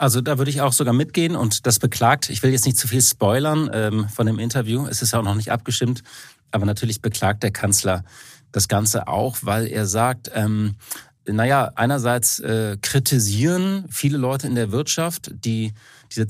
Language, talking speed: German, 190 wpm